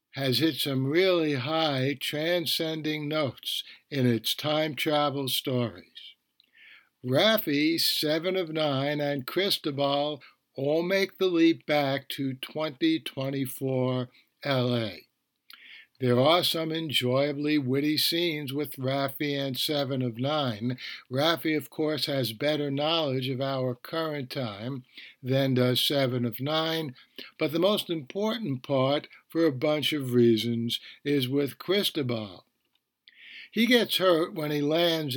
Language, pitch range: English, 130-160 Hz